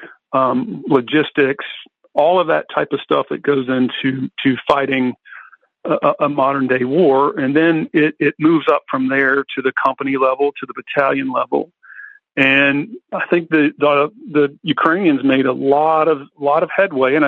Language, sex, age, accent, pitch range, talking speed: English, male, 50-69, American, 135-155 Hz, 170 wpm